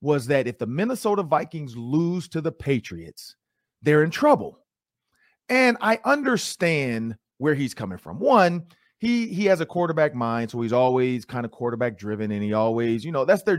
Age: 40-59